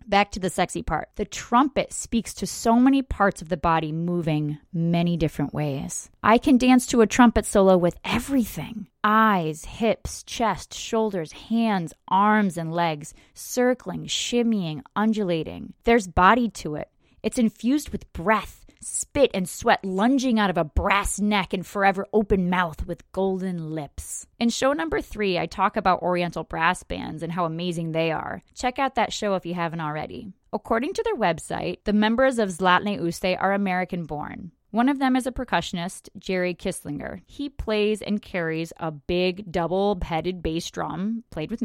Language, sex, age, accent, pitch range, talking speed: English, female, 20-39, American, 170-230 Hz, 165 wpm